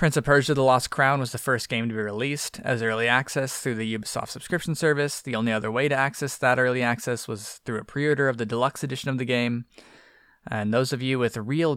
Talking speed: 240 wpm